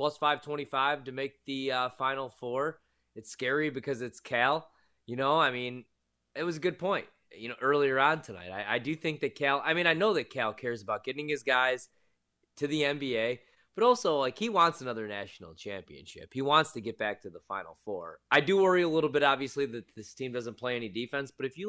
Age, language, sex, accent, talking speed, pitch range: 20-39, English, male, American, 225 wpm, 110-145 Hz